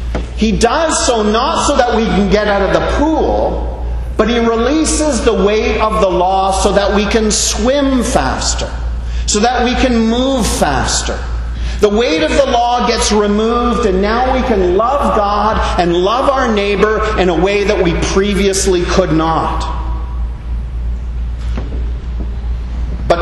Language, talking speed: English, 150 wpm